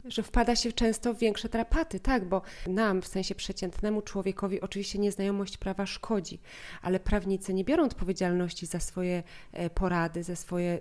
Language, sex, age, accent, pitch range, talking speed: Polish, female, 20-39, native, 180-205 Hz, 155 wpm